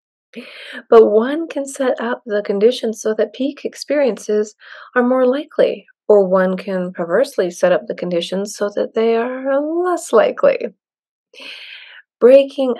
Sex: female